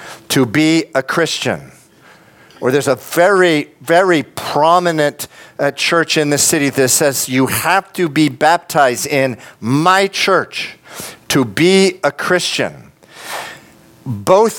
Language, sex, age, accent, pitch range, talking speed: English, male, 50-69, American, 140-185 Hz, 125 wpm